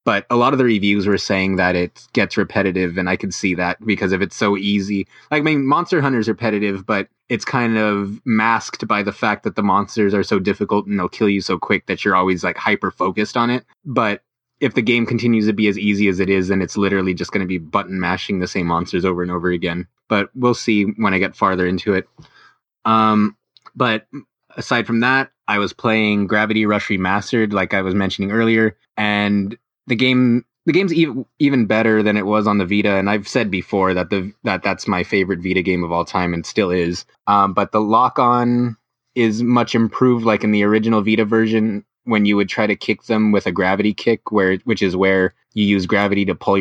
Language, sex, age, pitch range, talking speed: English, male, 20-39, 95-115 Hz, 225 wpm